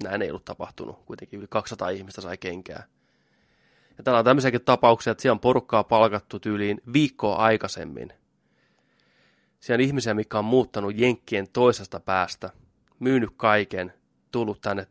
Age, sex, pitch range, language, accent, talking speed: 20-39, male, 105-120 Hz, Finnish, native, 145 wpm